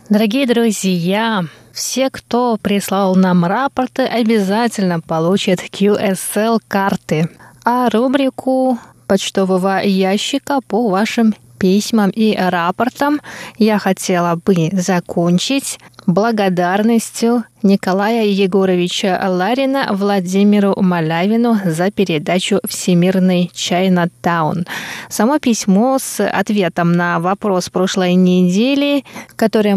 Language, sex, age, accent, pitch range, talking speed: Russian, female, 20-39, native, 185-220 Hz, 85 wpm